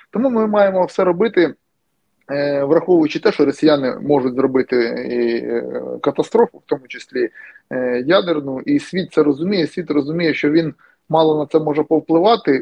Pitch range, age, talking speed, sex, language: 140-175 Hz, 20-39, 145 wpm, male, Ukrainian